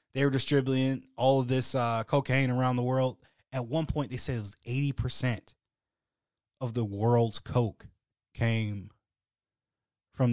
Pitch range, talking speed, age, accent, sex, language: 105-135 Hz, 145 wpm, 20-39, American, male, English